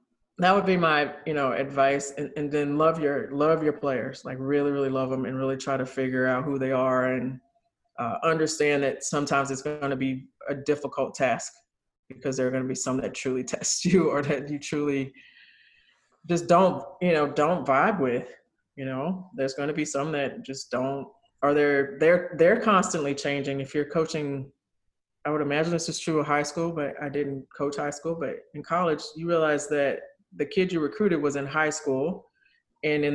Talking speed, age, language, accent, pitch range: 205 wpm, 20-39, English, American, 140-160 Hz